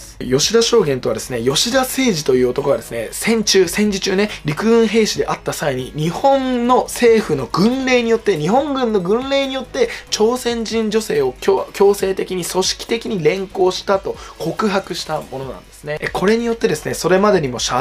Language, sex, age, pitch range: Japanese, male, 20-39, 145-215 Hz